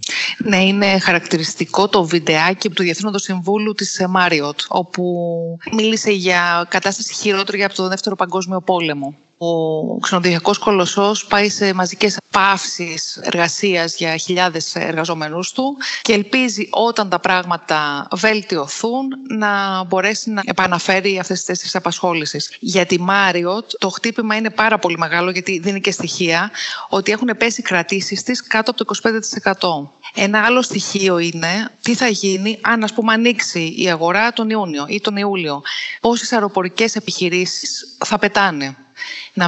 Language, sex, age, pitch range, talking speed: Greek, female, 30-49, 175-215 Hz, 140 wpm